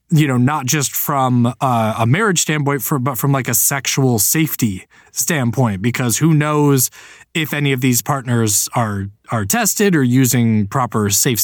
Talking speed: 155 wpm